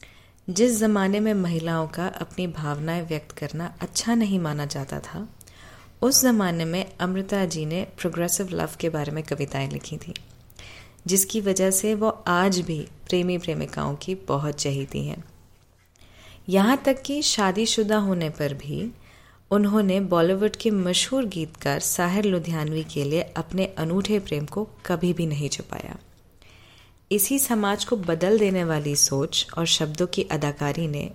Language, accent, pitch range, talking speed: Hindi, native, 145-195 Hz, 145 wpm